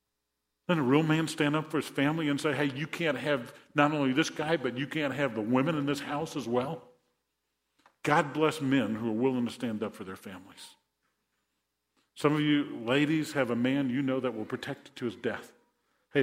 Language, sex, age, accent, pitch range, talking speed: English, male, 50-69, American, 125-160 Hz, 220 wpm